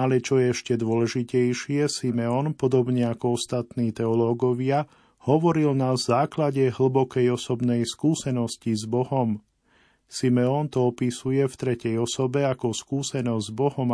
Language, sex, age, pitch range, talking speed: Slovak, male, 40-59, 120-140 Hz, 120 wpm